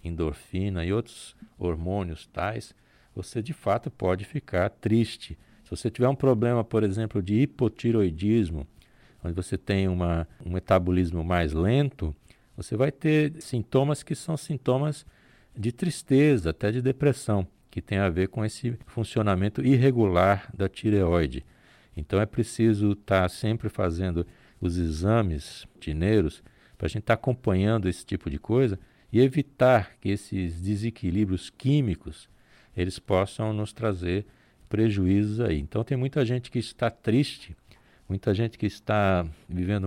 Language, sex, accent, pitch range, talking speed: Portuguese, male, Brazilian, 95-125 Hz, 140 wpm